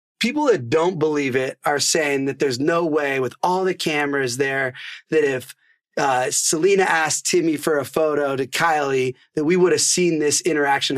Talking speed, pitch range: 185 wpm, 135-165 Hz